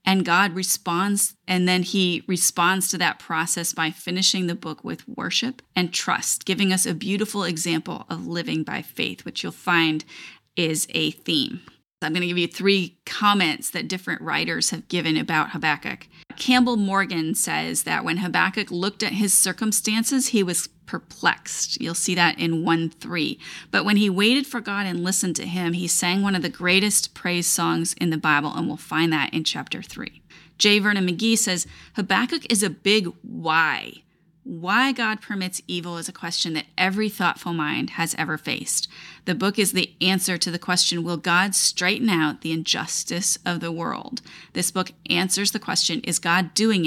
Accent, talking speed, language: American, 180 wpm, English